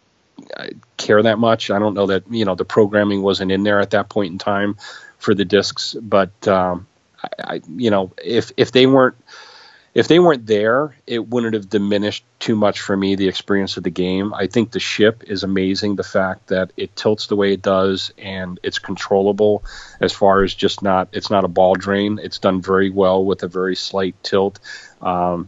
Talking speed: 205 wpm